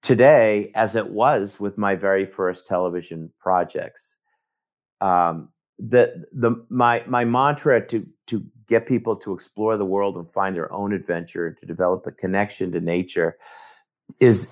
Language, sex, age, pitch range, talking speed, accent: English, male, 50-69, 95-120 Hz, 155 wpm, American